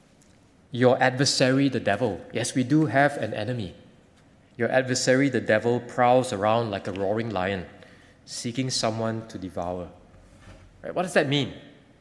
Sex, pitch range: male, 105-135 Hz